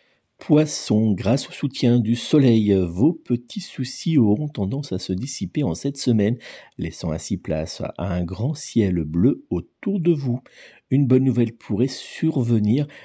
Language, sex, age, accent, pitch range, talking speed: French, male, 50-69, French, 100-130 Hz, 150 wpm